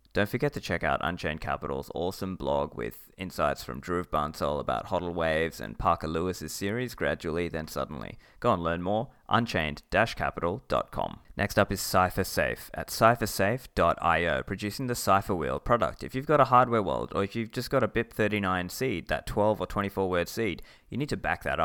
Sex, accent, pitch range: male, Australian, 90-115 Hz